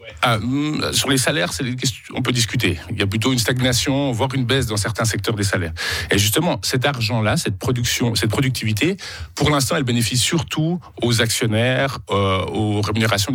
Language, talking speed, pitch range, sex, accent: French, 190 wpm, 95-125 Hz, male, French